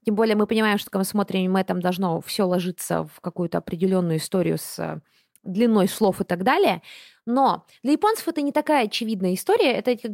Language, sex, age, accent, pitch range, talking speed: Russian, female, 20-39, native, 190-245 Hz, 195 wpm